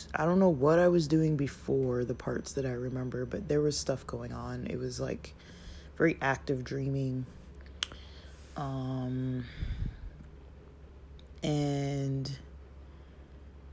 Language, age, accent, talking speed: English, 20-39, American, 120 wpm